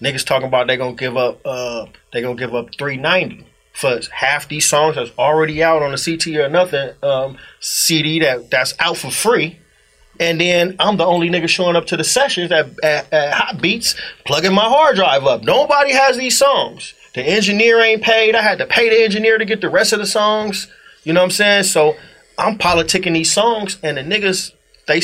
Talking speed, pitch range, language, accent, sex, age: 215 wpm, 135-185 Hz, English, American, male, 30-49